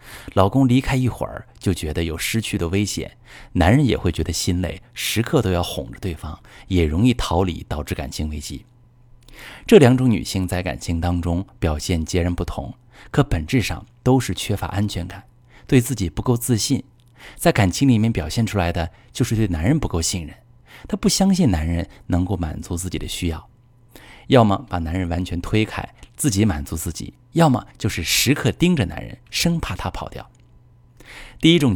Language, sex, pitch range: Chinese, male, 90-120 Hz